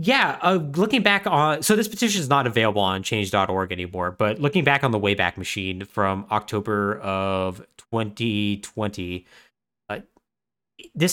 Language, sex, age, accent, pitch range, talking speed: English, male, 30-49, American, 100-170 Hz, 145 wpm